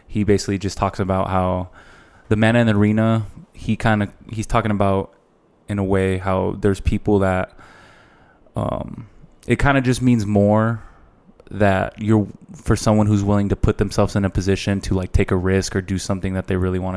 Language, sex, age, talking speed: English, male, 20-39, 195 wpm